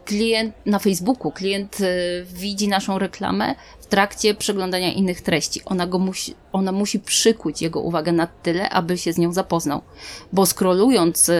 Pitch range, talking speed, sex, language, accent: 170-195 Hz, 140 wpm, female, Polish, native